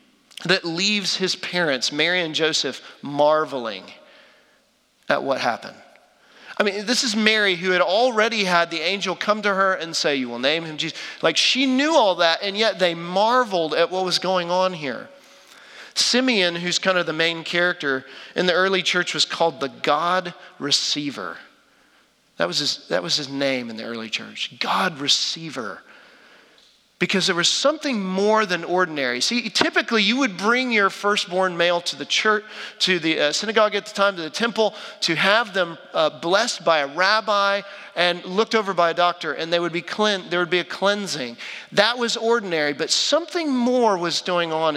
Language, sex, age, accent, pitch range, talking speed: English, male, 40-59, American, 165-215 Hz, 185 wpm